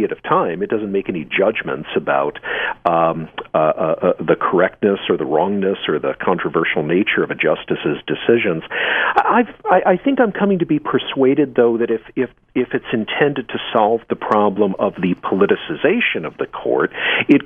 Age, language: 50-69, English